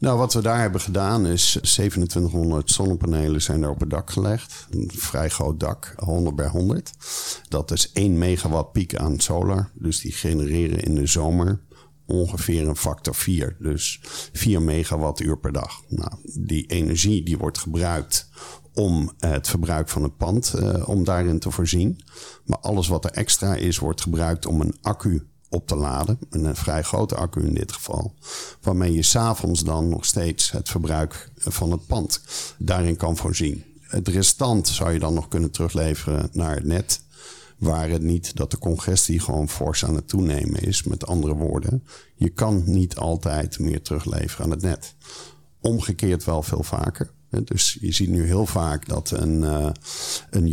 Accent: Dutch